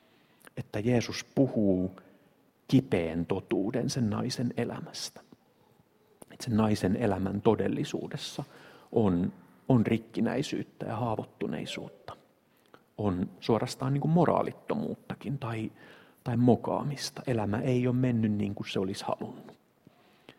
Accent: native